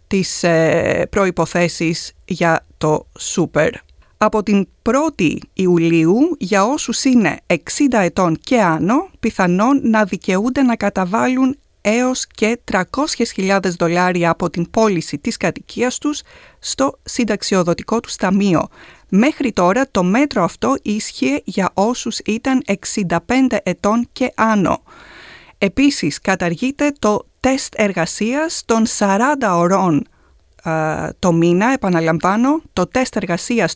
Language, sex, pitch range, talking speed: Greek, female, 175-245 Hz, 110 wpm